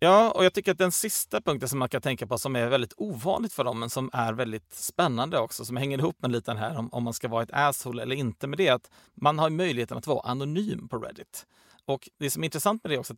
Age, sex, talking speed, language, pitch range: 30-49, male, 275 wpm, Swedish, 125-160 Hz